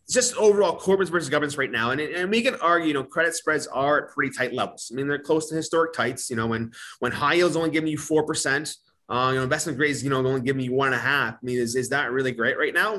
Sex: male